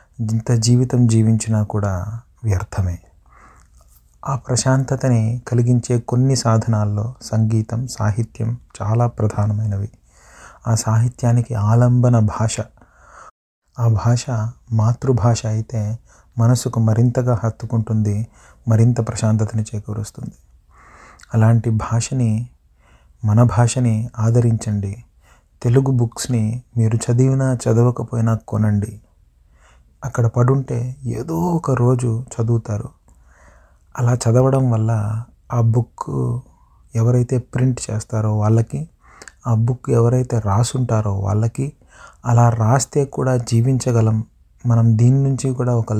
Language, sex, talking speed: English, male, 85 wpm